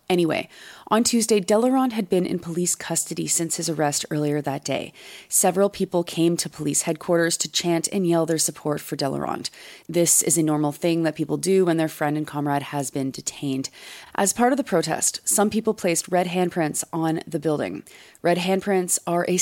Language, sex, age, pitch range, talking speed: English, female, 30-49, 155-185 Hz, 190 wpm